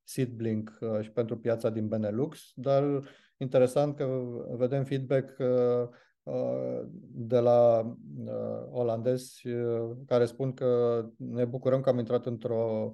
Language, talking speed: Romanian, 100 wpm